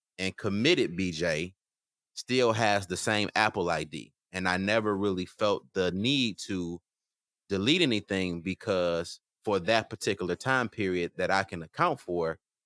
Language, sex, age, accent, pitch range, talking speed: English, male, 30-49, American, 90-110 Hz, 140 wpm